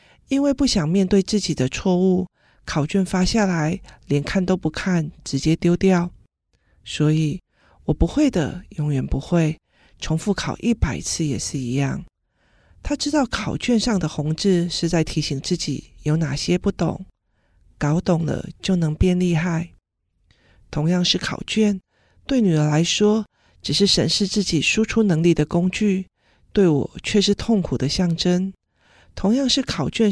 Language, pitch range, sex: Chinese, 155-200 Hz, male